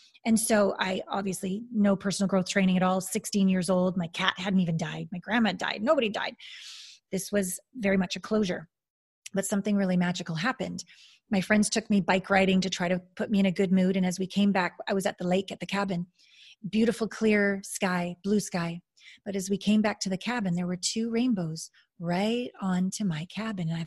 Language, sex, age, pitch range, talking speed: English, female, 30-49, 185-225 Hz, 215 wpm